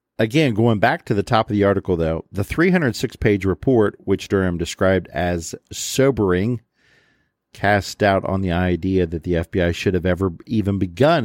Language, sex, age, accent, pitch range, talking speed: English, male, 50-69, American, 90-115 Hz, 170 wpm